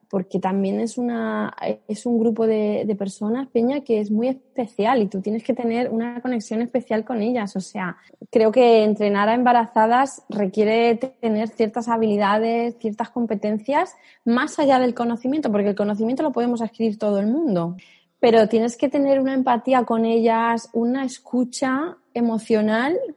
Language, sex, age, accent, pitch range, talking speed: Spanish, female, 20-39, Spanish, 205-255 Hz, 160 wpm